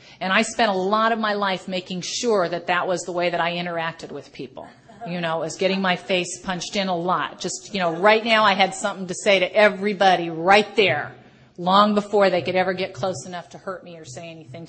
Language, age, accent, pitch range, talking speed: English, 40-59, American, 165-195 Hz, 235 wpm